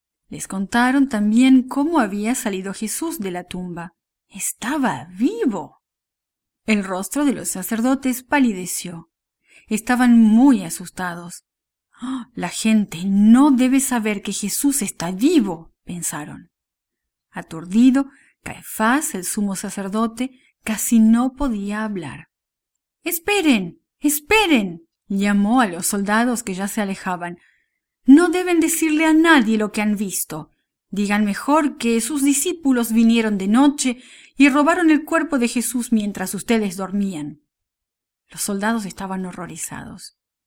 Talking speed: 120 wpm